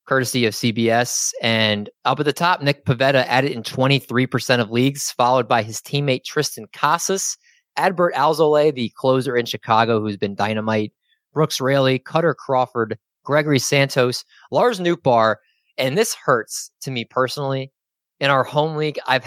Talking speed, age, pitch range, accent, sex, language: 155 wpm, 20-39, 110-135 Hz, American, male, English